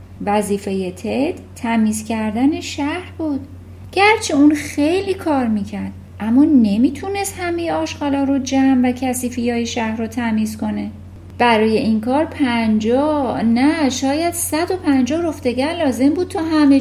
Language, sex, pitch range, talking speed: Persian, female, 195-290 Hz, 130 wpm